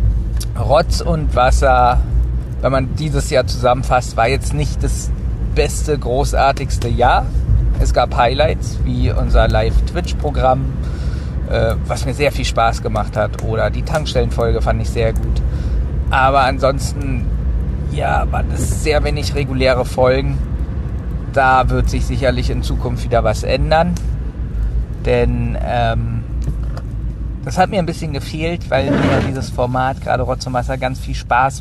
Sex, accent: male, German